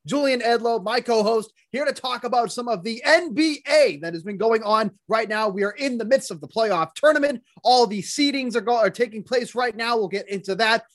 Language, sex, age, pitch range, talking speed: English, male, 30-49, 195-235 Hz, 230 wpm